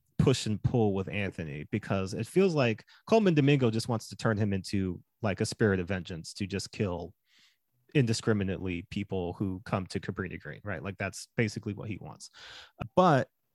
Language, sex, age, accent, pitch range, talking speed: English, male, 30-49, American, 100-135 Hz, 175 wpm